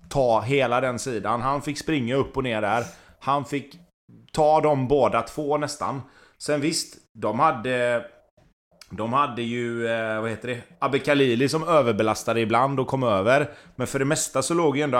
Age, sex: 30-49, male